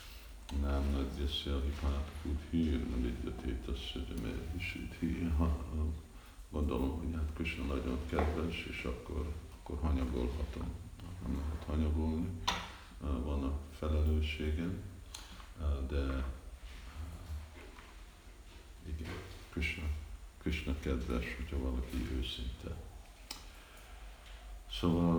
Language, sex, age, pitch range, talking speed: Hungarian, male, 50-69, 70-80 Hz, 85 wpm